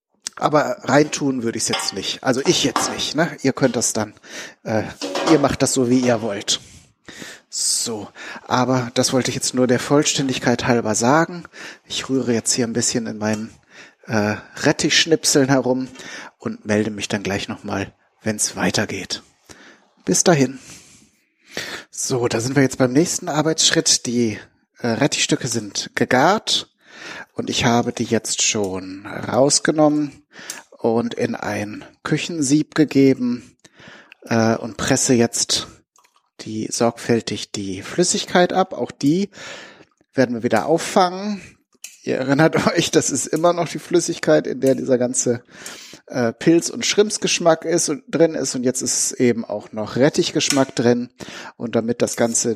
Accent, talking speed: German, 150 wpm